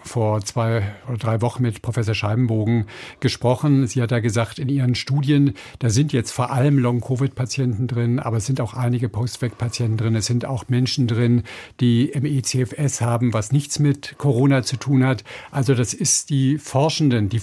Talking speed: 180 wpm